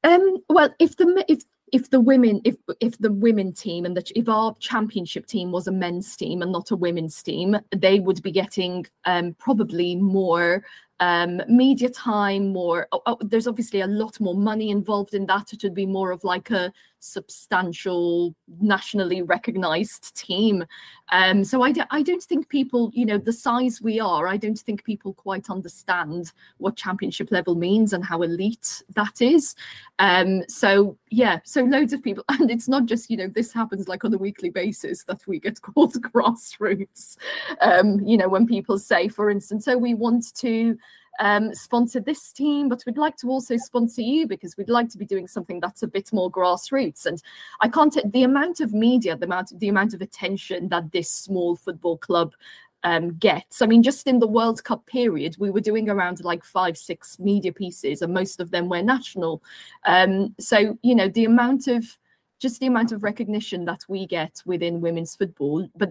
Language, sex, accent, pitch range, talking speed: English, female, British, 185-235 Hz, 195 wpm